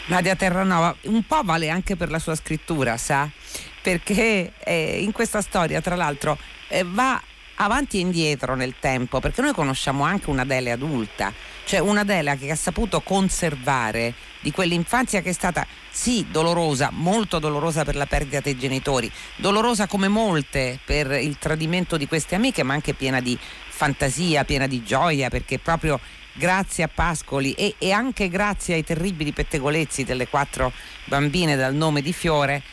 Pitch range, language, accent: 135-180 Hz, Italian, native